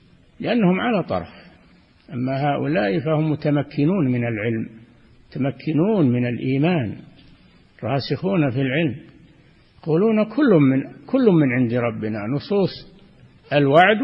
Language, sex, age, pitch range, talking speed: Arabic, male, 60-79, 130-170 Hz, 105 wpm